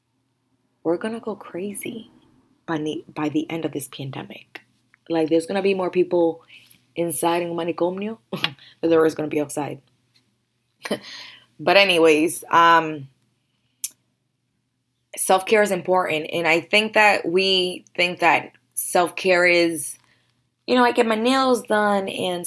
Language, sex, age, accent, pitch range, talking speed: English, female, 20-39, American, 150-180 Hz, 145 wpm